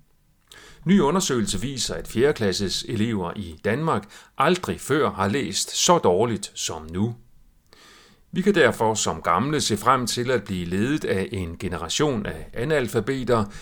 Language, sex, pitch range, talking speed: Danish, male, 100-140 Hz, 145 wpm